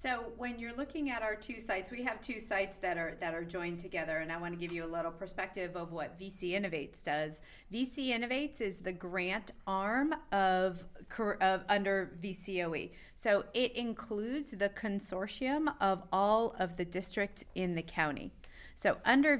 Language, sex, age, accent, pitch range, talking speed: English, female, 40-59, American, 175-215 Hz, 175 wpm